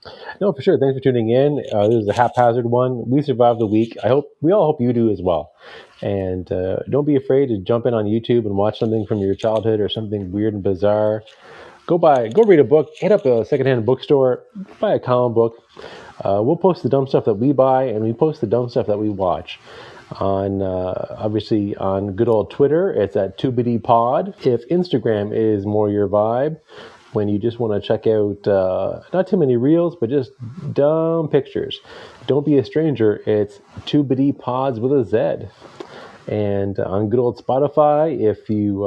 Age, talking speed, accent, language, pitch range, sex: 30-49, 200 wpm, American, English, 105-140 Hz, male